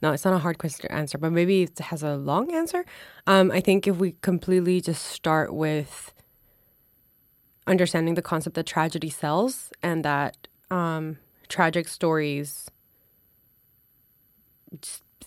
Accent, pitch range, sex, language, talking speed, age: American, 155-180 Hz, female, Danish, 140 wpm, 20-39